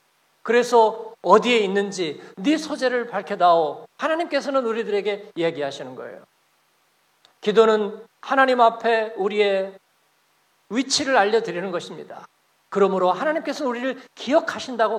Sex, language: male, Korean